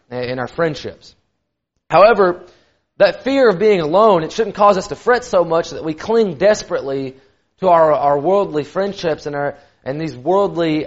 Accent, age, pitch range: American, 30-49, 150-210 Hz